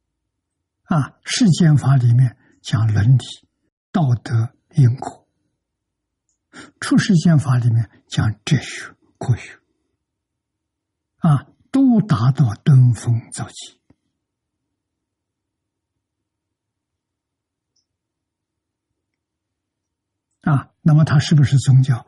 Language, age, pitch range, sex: Chinese, 60-79, 105-140 Hz, male